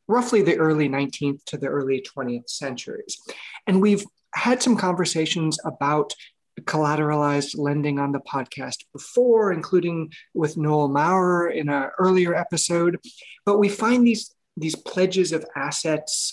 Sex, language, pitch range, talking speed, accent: male, English, 140-180 Hz, 135 wpm, American